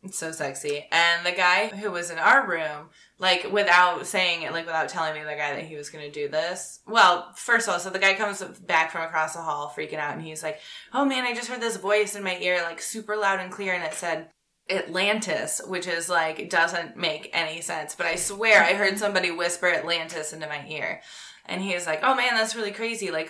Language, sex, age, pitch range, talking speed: English, female, 20-39, 155-195 Hz, 240 wpm